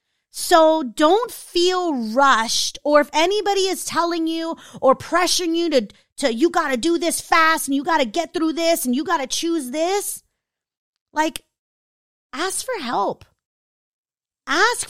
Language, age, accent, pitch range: English, 30-49, American, 255-355 Hz